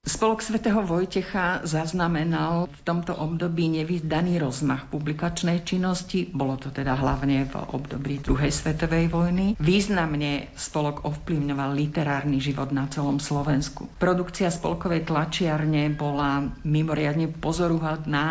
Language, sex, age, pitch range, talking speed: Slovak, female, 50-69, 145-165 Hz, 110 wpm